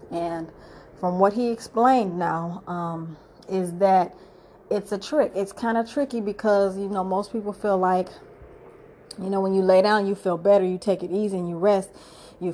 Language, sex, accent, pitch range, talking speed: English, female, American, 180-210 Hz, 190 wpm